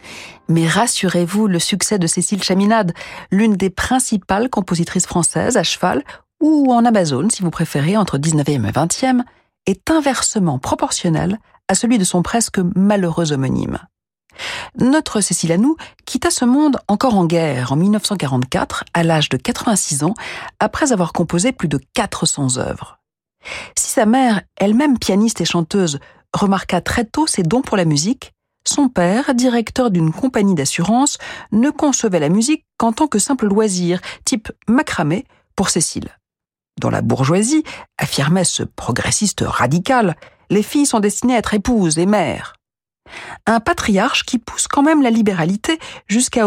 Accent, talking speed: French, 150 wpm